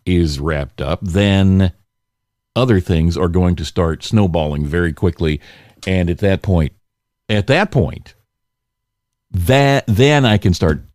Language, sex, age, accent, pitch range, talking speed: English, male, 50-69, American, 90-110 Hz, 135 wpm